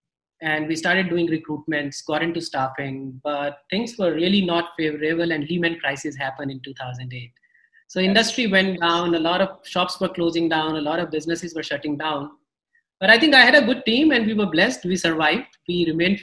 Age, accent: 30-49, Indian